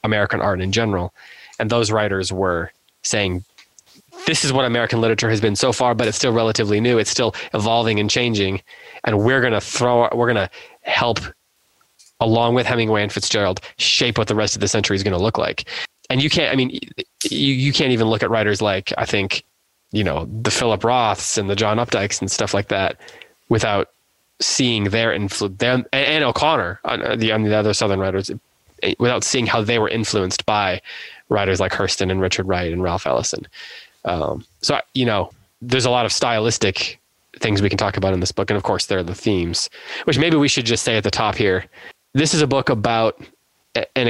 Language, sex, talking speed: English, male, 200 wpm